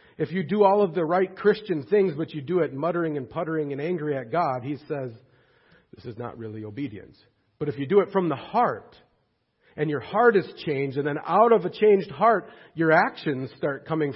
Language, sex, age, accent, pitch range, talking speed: English, male, 40-59, American, 150-200 Hz, 215 wpm